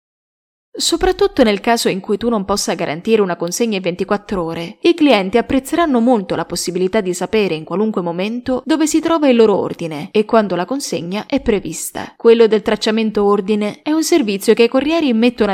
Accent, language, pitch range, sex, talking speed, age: native, Italian, 190-245 Hz, female, 185 wpm, 20-39